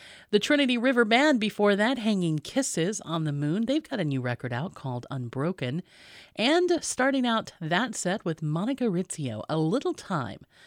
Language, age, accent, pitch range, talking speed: English, 30-49, American, 150-220 Hz, 170 wpm